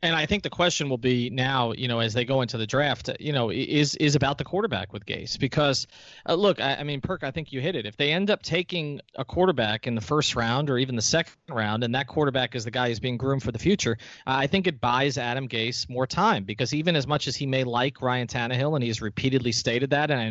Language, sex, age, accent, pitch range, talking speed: English, male, 30-49, American, 120-155 Hz, 265 wpm